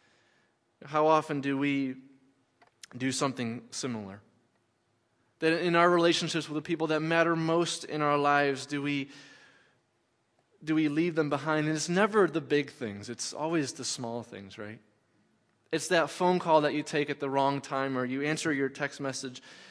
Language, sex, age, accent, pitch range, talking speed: English, male, 20-39, American, 120-150 Hz, 170 wpm